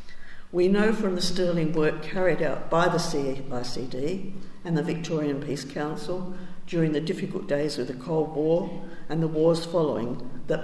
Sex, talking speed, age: female, 165 wpm, 60-79